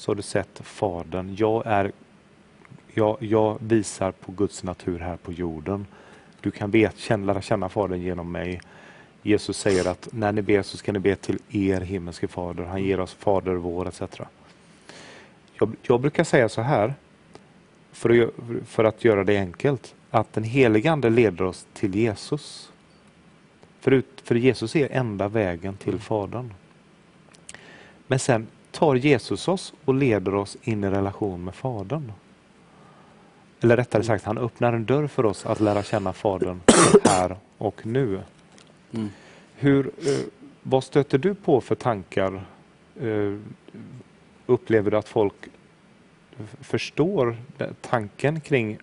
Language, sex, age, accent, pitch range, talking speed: English, male, 30-49, Swedish, 100-135 Hz, 135 wpm